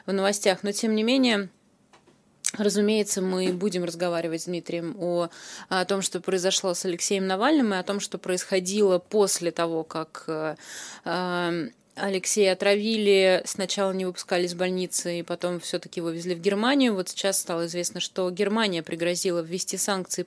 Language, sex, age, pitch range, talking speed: Russian, female, 20-39, 175-200 Hz, 150 wpm